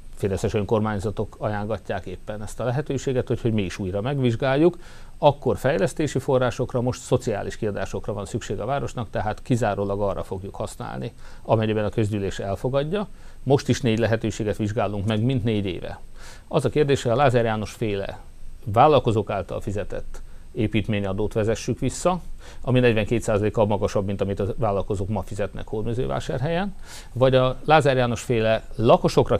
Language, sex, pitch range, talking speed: Hungarian, male, 105-130 Hz, 145 wpm